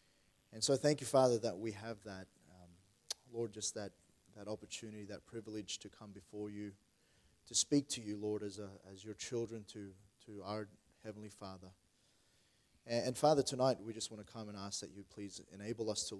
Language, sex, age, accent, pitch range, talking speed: English, male, 20-39, Australian, 100-115 Hz, 195 wpm